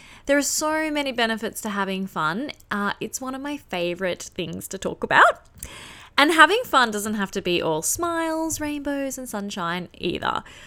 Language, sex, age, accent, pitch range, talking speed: English, female, 20-39, Australian, 180-245 Hz, 175 wpm